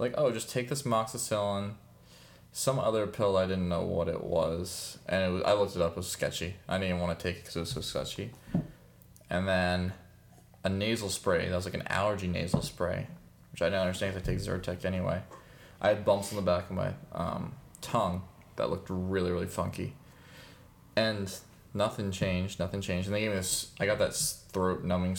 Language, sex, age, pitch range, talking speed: English, male, 20-39, 90-100 Hz, 205 wpm